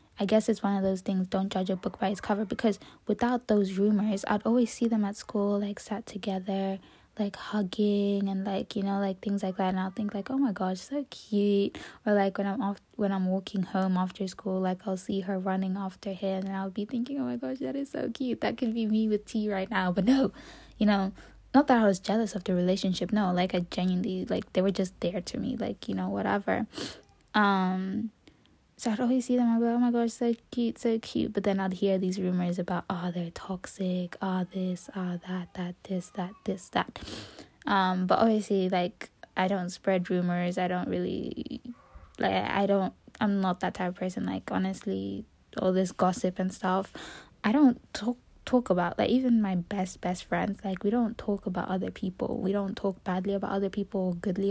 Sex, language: female, English